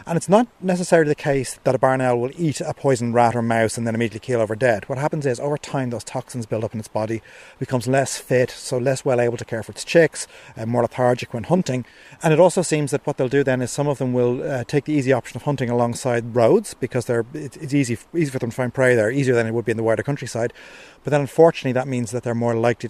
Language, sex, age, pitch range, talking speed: English, male, 30-49, 115-145 Hz, 265 wpm